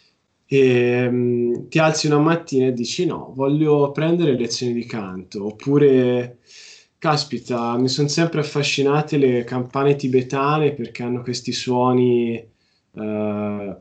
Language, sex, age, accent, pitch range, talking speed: Italian, male, 20-39, native, 120-145 Hz, 120 wpm